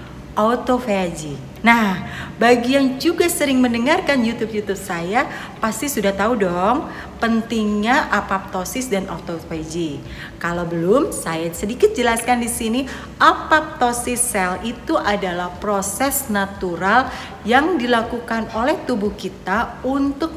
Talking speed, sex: 105 wpm, female